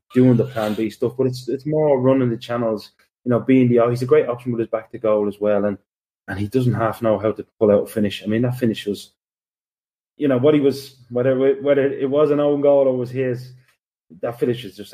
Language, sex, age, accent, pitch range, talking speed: English, male, 20-39, British, 105-125 Hz, 255 wpm